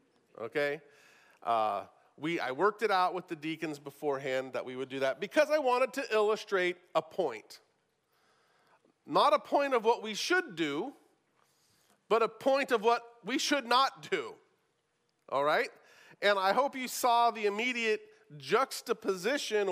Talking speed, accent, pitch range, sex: 150 wpm, American, 180-250 Hz, male